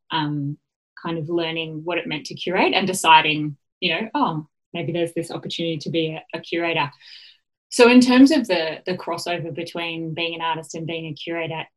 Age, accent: 20-39, Australian